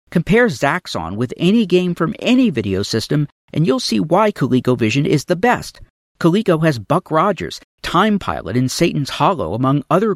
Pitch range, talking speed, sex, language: 110-160 Hz, 165 wpm, male, English